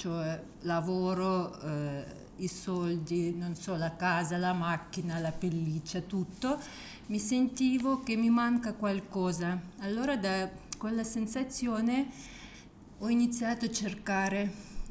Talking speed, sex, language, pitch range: 115 wpm, female, Italian, 175-215 Hz